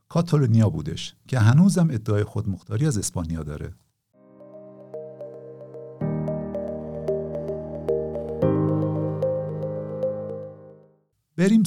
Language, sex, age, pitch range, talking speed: Persian, male, 50-69, 90-145 Hz, 50 wpm